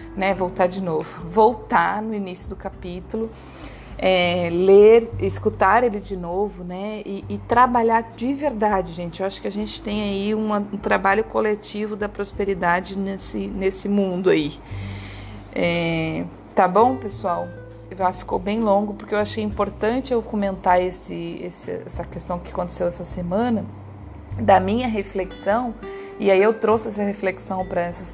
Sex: female